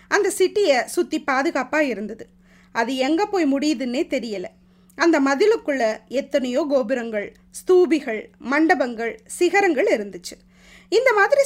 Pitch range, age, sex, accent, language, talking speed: 225-345 Hz, 20-39, female, native, Tamil, 105 wpm